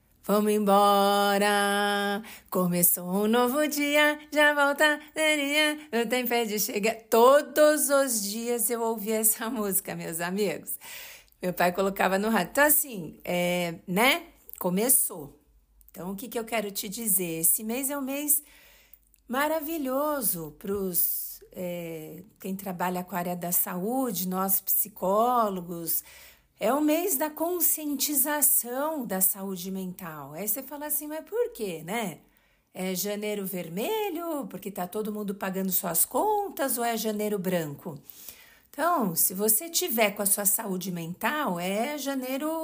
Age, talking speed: 50-69, 140 wpm